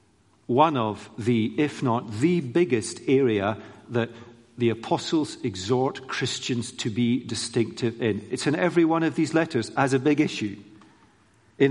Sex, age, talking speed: male, 50-69, 150 wpm